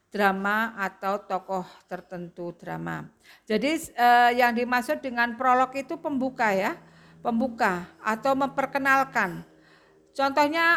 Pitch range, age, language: 200-260 Hz, 50-69, Indonesian